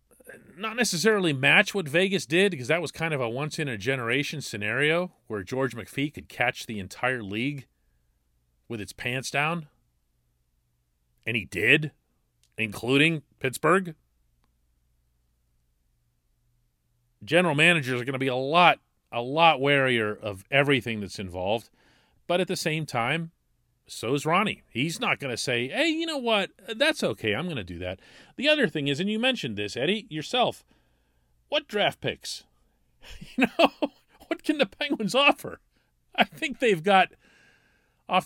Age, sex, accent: 40-59, male, American